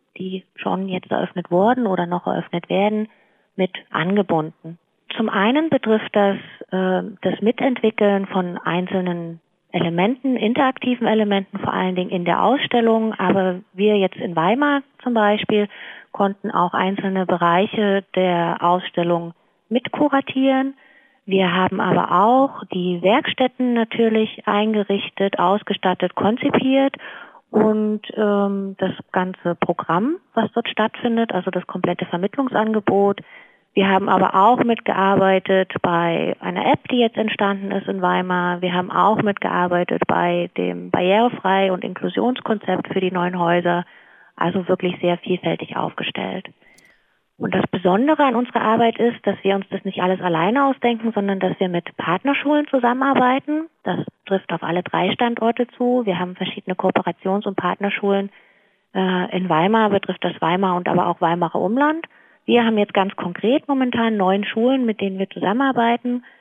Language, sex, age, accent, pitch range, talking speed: German, female, 30-49, German, 185-235 Hz, 140 wpm